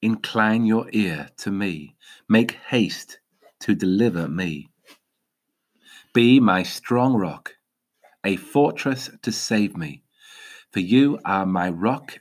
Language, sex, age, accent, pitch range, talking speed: English, male, 40-59, British, 90-120 Hz, 120 wpm